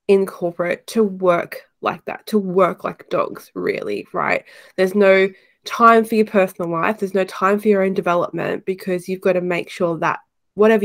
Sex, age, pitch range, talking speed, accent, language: female, 20-39, 180-215 Hz, 190 wpm, Australian, English